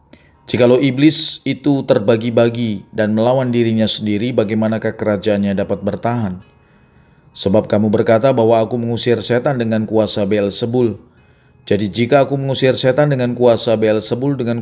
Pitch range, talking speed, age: 100-120 Hz, 135 wpm, 40-59